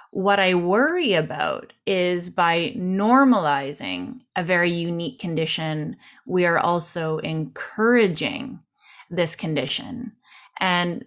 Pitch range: 160-205 Hz